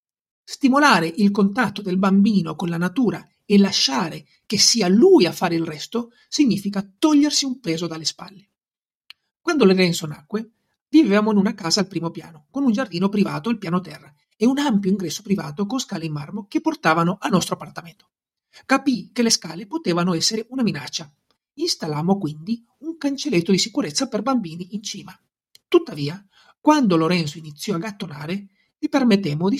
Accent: native